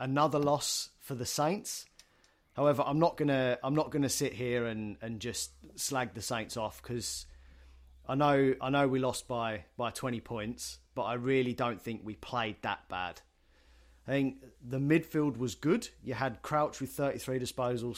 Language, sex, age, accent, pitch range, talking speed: English, male, 30-49, British, 95-130 Hz, 185 wpm